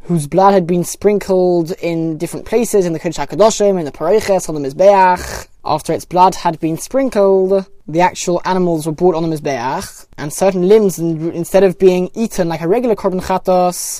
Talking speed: 195 wpm